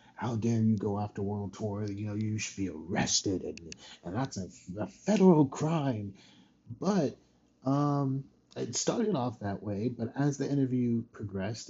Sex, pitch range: male, 100-130 Hz